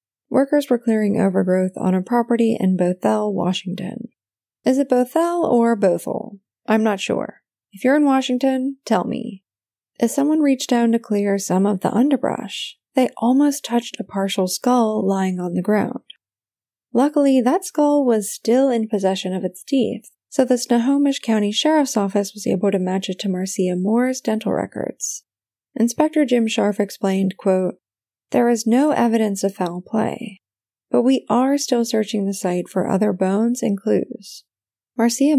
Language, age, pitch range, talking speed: English, 20-39, 195-250 Hz, 160 wpm